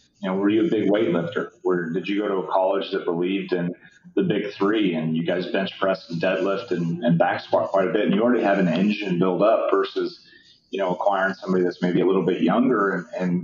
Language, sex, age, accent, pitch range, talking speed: English, male, 30-49, American, 90-120 Hz, 245 wpm